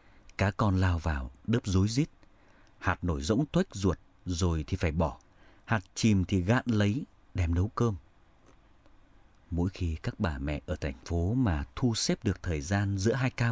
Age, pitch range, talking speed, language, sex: 30-49, 90-115 Hz, 180 wpm, Vietnamese, male